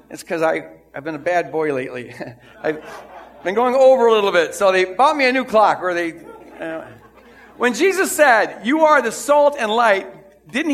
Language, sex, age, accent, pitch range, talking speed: English, male, 50-69, American, 190-255 Hz, 195 wpm